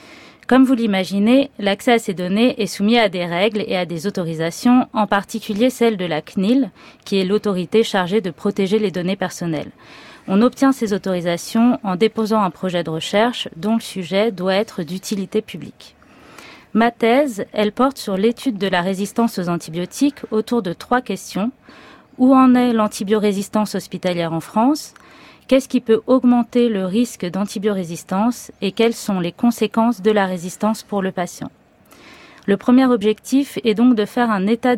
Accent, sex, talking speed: French, female, 165 wpm